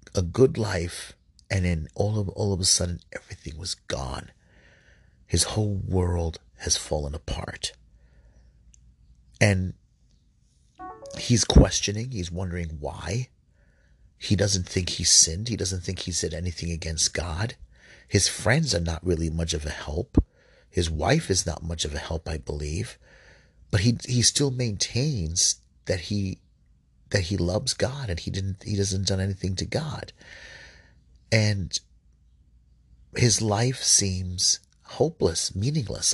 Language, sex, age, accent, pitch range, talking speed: English, male, 40-59, American, 80-100 Hz, 140 wpm